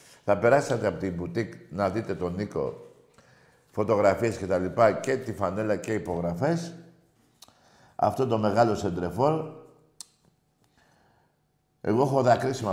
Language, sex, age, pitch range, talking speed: Greek, male, 60-79, 90-110 Hz, 125 wpm